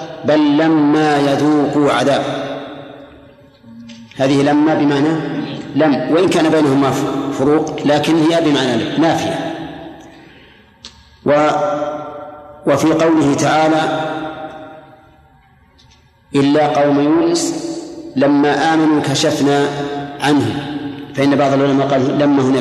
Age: 50-69